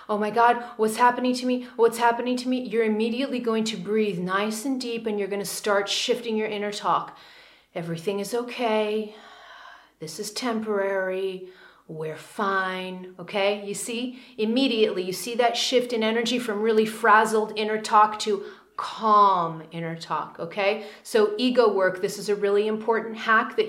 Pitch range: 200-240 Hz